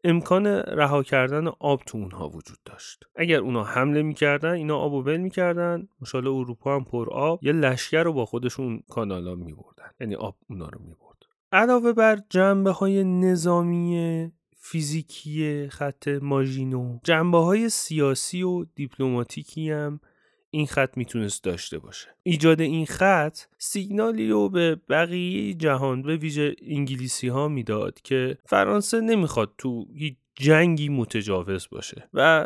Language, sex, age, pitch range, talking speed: Persian, male, 30-49, 120-170 Hz, 140 wpm